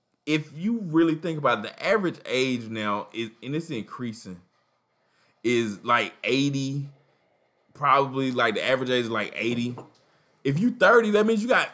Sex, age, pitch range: male, 20-39, 120-175 Hz